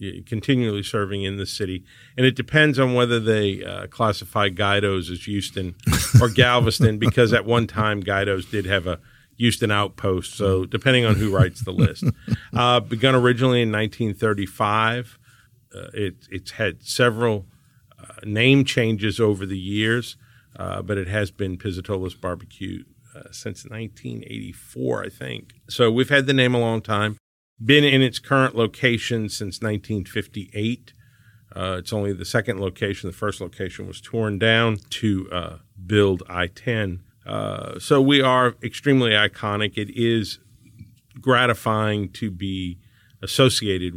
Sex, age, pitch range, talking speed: male, 50-69, 100-120 Hz, 145 wpm